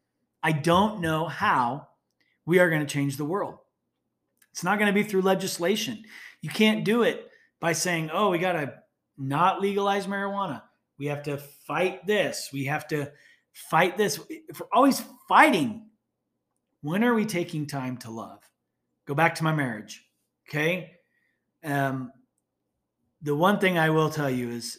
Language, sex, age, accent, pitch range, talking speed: English, male, 30-49, American, 140-190 Hz, 160 wpm